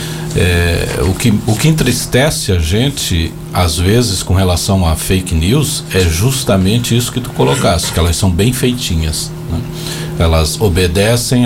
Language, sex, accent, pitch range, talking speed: Portuguese, male, Brazilian, 90-120 Hz, 150 wpm